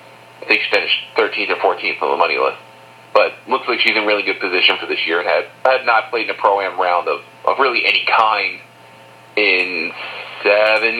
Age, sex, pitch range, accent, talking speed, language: 40-59, male, 100-120 Hz, American, 200 wpm, English